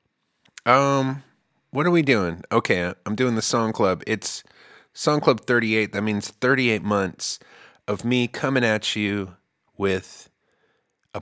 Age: 30-49